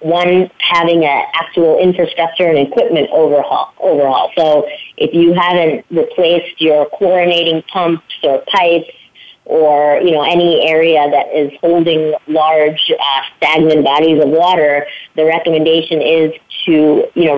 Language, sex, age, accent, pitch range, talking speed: English, female, 40-59, American, 145-170 Hz, 135 wpm